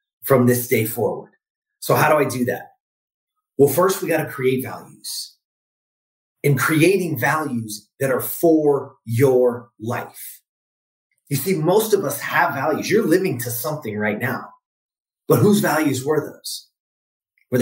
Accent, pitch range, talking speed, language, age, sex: American, 130-190 Hz, 150 wpm, English, 30-49, male